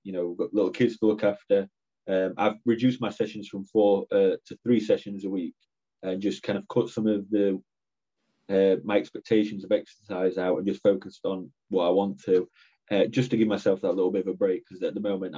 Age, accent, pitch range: 20-39, British, 100-115 Hz